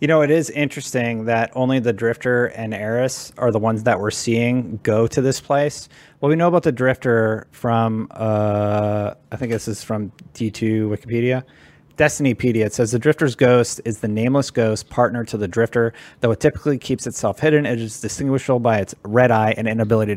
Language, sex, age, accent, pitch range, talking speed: English, male, 30-49, American, 110-135 Hz, 195 wpm